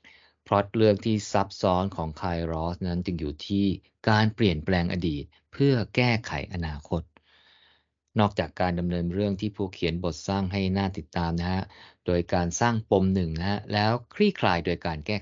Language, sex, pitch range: Thai, male, 85-110 Hz